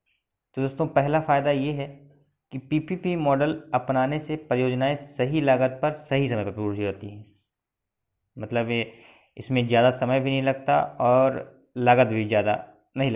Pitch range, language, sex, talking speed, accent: 125-150 Hz, Hindi, male, 155 wpm, native